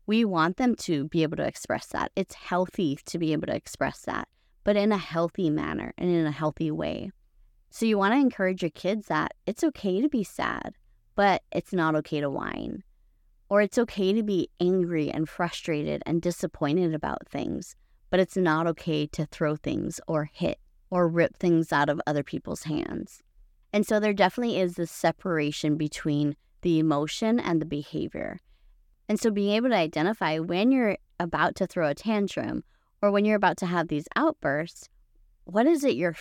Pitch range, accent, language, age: 155-200 Hz, American, English, 20-39